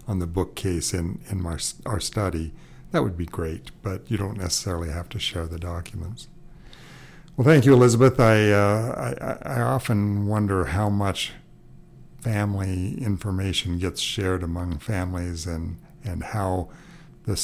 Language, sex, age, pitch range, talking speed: English, male, 60-79, 95-115 Hz, 150 wpm